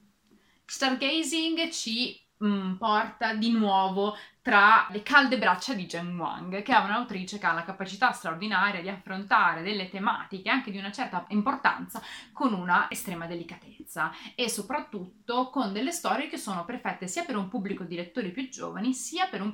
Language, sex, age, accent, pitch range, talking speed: Italian, female, 30-49, native, 190-265 Hz, 165 wpm